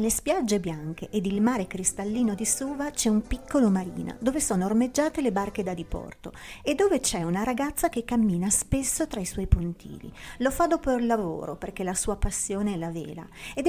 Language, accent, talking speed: Italian, native, 195 wpm